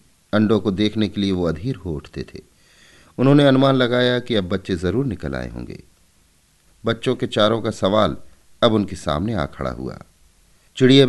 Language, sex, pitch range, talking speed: Hindi, male, 80-115 Hz, 175 wpm